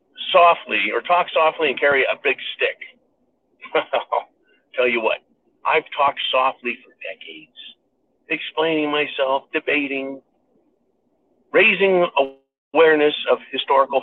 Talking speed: 105 wpm